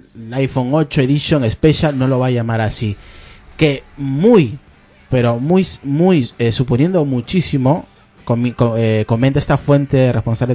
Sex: male